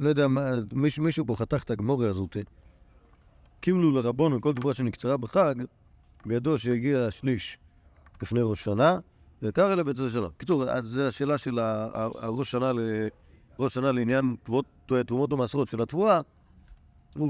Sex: male